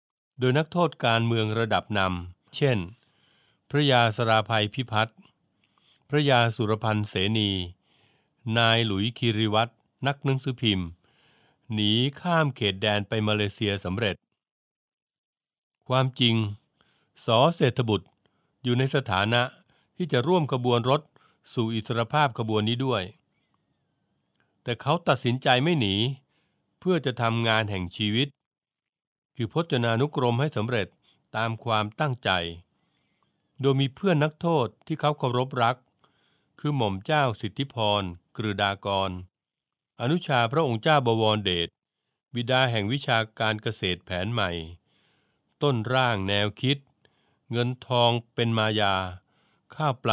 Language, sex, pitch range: Thai, male, 105-135 Hz